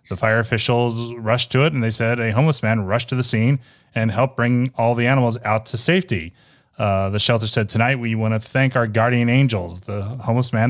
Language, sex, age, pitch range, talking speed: English, male, 30-49, 110-130 Hz, 225 wpm